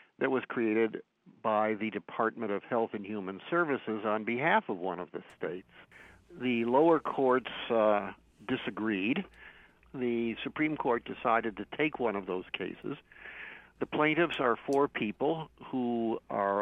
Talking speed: 145 wpm